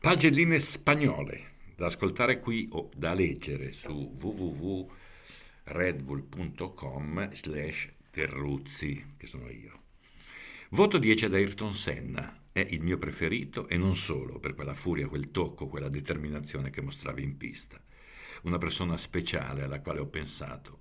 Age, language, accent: 60-79, Italian, native